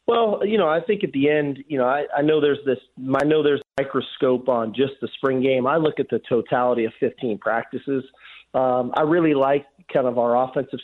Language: English